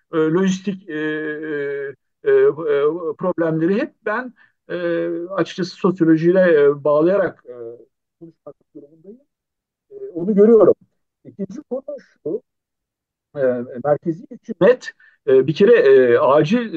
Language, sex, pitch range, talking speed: Turkish, male, 155-235 Hz, 95 wpm